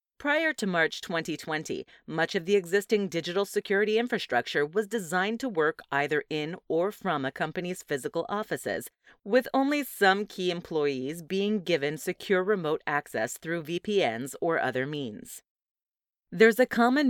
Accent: American